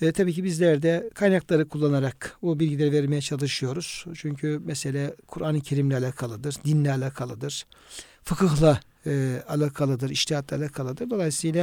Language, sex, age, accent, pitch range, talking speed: Turkish, male, 60-79, native, 145-180 Hz, 120 wpm